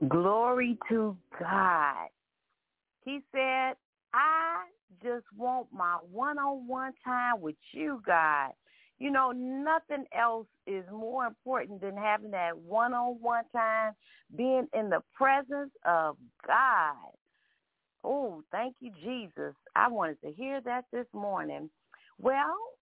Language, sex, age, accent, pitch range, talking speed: English, female, 40-59, American, 185-250 Hz, 115 wpm